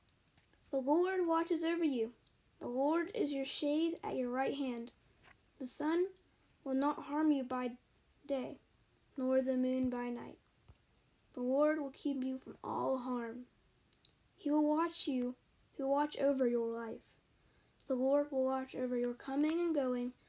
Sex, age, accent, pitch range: female, 10-29, American, 255-320 Hz